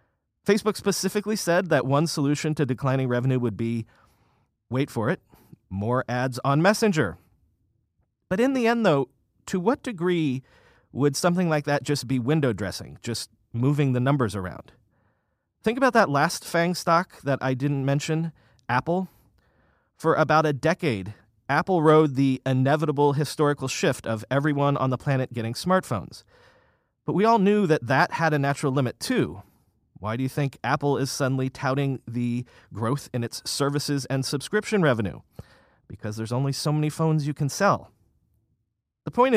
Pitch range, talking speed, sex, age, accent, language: 120-160 Hz, 160 wpm, male, 30-49, American, English